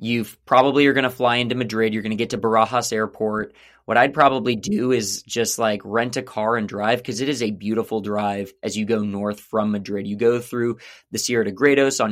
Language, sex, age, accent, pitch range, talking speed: English, male, 20-39, American, 105-125 Hz, 235 wpm